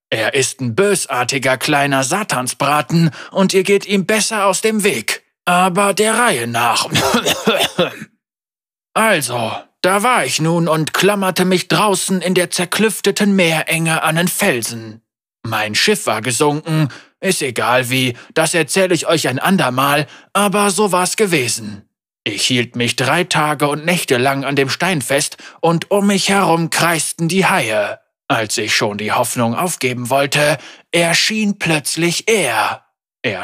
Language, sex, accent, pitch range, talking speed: German, male, German, 135-185 Hz, 145 wpm